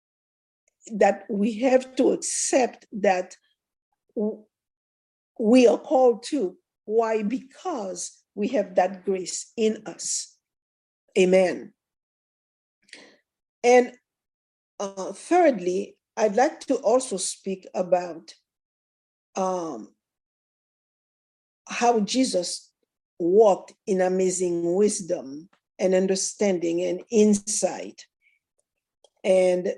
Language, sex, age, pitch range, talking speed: English, female, 50-69, 180-240 Hz, 80 wpm